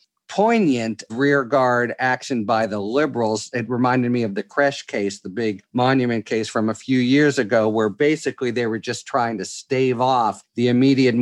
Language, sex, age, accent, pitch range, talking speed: English, male, 50-69, American, 110-130 Hz, 180 wpm